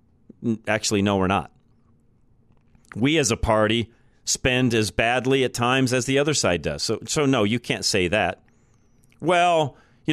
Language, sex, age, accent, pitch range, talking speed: English, male, 40-59, American, 110-145 Hz, 160 wpm